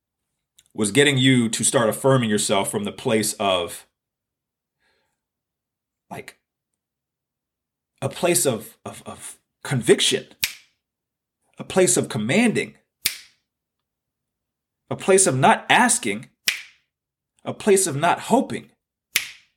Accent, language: American, English